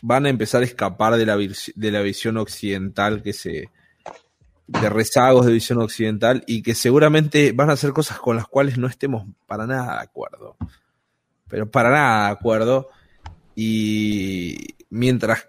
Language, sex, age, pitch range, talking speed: Spanish, male, 30-49, 110-135 Hz, 165 wpm